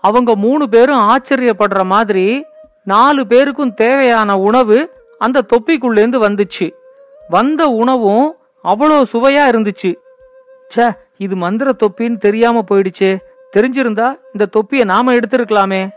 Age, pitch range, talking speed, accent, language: 40-59, 215-275 Hz, 105 wpm, native, Tamil